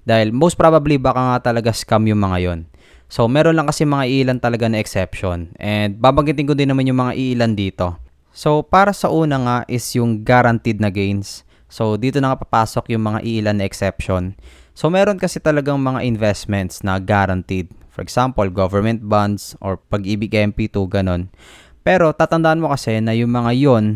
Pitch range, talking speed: 100-130 Hz, 180 wpm